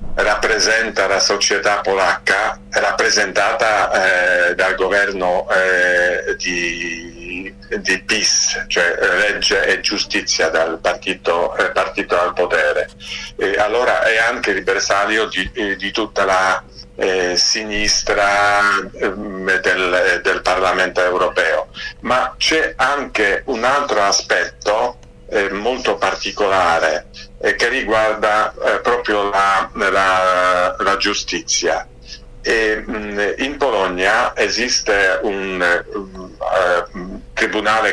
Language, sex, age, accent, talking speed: Italian, male, 50-69, native, 100 wpm